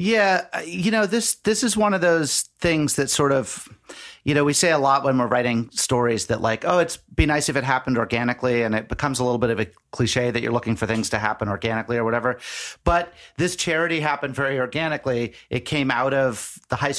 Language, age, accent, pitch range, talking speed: English, 40-59, American, 120-155 Hz, 225 wpm